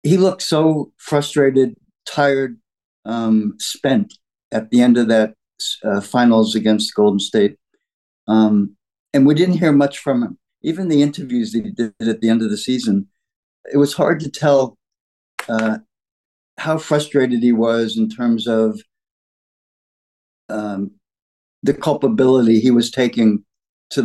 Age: 60-79